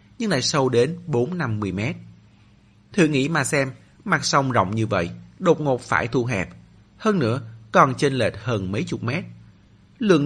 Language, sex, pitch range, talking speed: Vietnamese, male, 105-150 Hz, 180 wpm